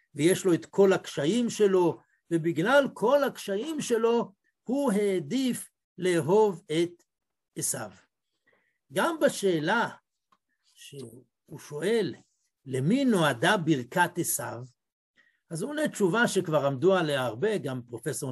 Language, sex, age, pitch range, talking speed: Hebrew, male, 60-79, 160-235 Hz, 105 wpm